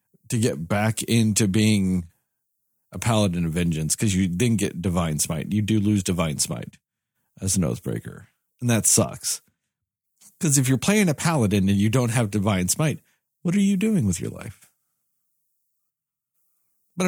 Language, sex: English, male